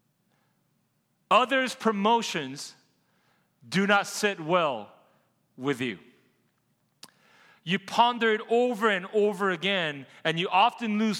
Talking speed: 100 wpm